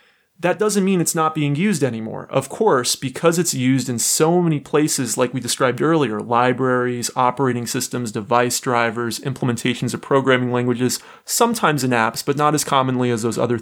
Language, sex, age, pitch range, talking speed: English, male, 30-49, 125-155 Hz, 175 wpm